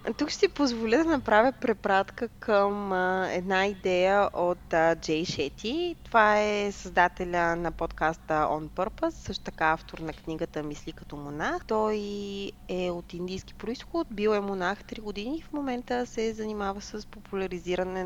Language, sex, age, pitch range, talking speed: Bulgarian, female, 20-39, 170-210 Hz, 150 wpm